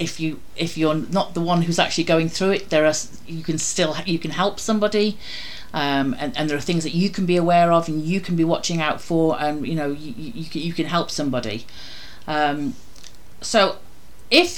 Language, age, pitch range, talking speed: English, 40-59, 160-210 Hz, 215 wpm